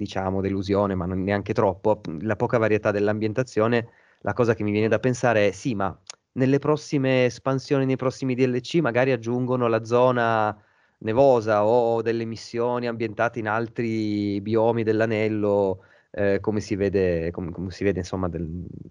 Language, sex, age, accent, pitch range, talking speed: Italian, male, 30-49, native, 100-130 Hz, 155 wpm